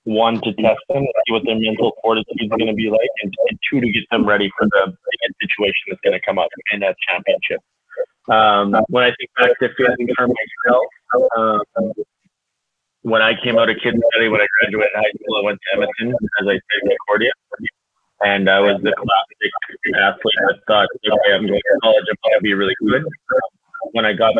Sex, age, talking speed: male, 30-49, 200 wpm